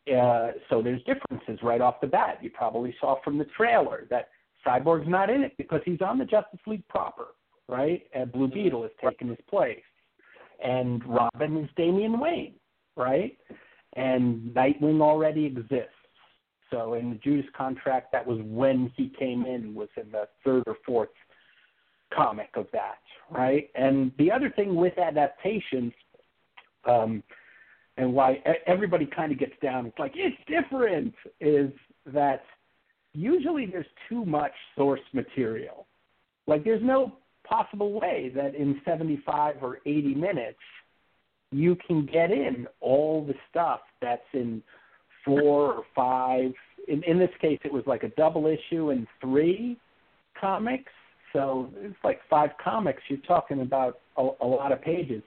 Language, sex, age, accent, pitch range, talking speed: English, male, 50-69, American, 130-175 Hz, 150 wpm